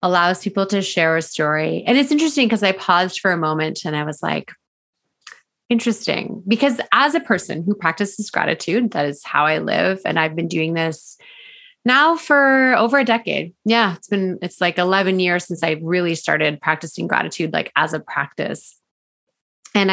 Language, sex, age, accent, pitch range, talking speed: English, female, 30-49, American, 175-215 Hz, 180 wpm